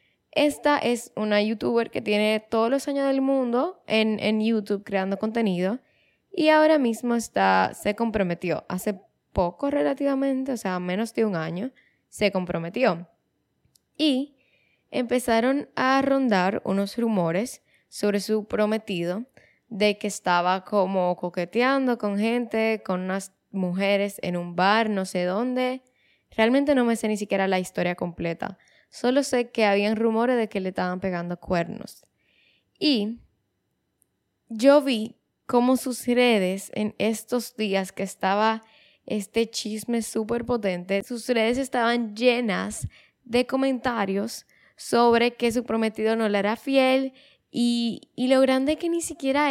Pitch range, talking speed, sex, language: 200-250 Hz, 140 wpm, female, Spanish